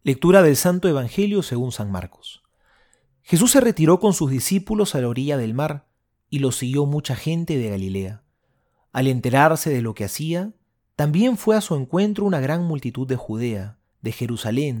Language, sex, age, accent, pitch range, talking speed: Spanish, male, 30-49, Argentinian, 110-170 Hz, 175 wpm